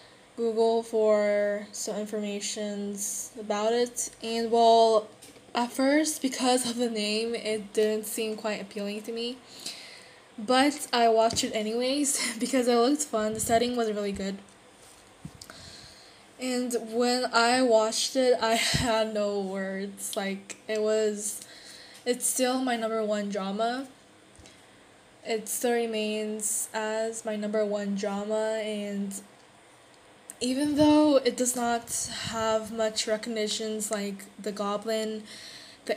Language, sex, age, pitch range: Korean, female, 10-29, 210-240 Hz